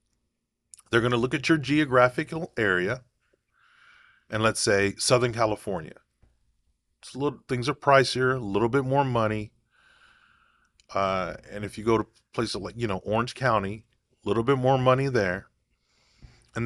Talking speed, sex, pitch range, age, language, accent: 155 wpm, male, 105-130 Hz, 40-59, English, American